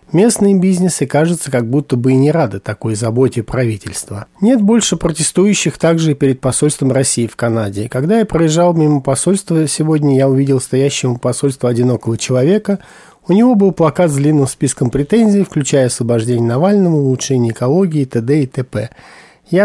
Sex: male